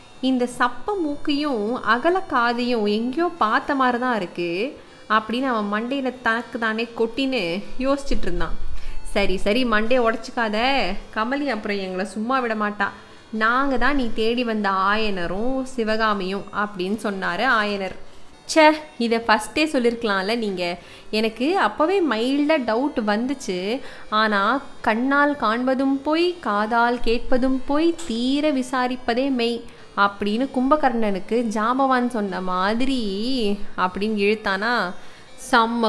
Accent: native